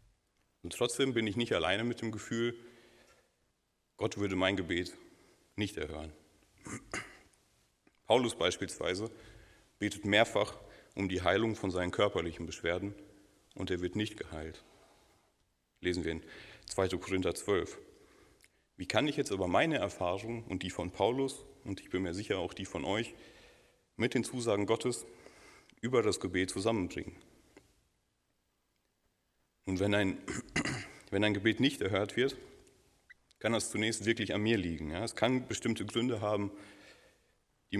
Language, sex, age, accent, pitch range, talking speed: German, male, 40-59, German, 95-115 Hz, 135 wpm